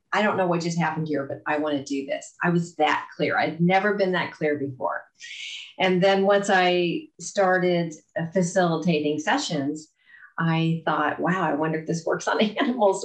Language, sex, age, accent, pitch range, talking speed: English, female, 40-59, American, 145-170 Hz, 185 wpm